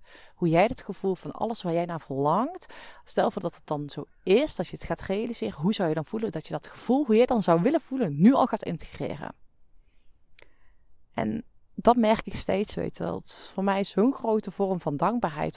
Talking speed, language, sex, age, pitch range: 230 wpm, Dutch, female, 30-49, 160-215 Hz